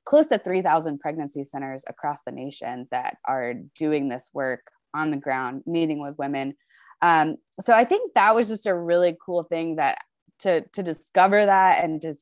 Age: 20-39